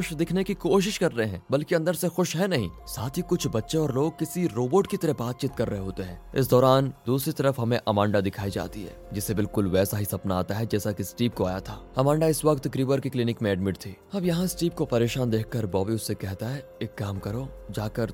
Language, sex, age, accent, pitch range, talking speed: Hindi, male, 20-39, native, 105-135 Hz, 180 wpm